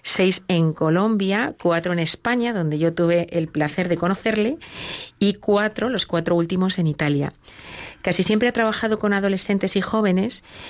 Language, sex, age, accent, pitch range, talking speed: Spanish, female, 30-49, Spanish, 165-205 Hz, 155 wpm